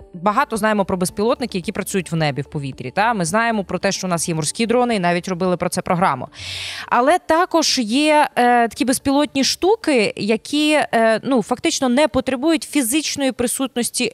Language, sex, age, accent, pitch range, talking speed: Ukrainian, female, 20-39, native, 190-265 Hz, 180 wpm